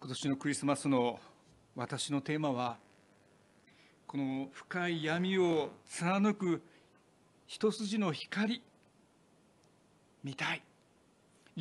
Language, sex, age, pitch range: Japanese, male, 60-79, 140-205 Hz